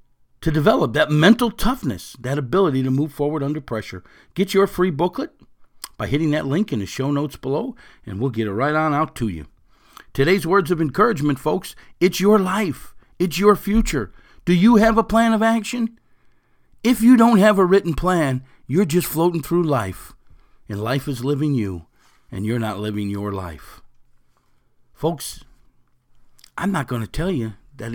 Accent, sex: American, male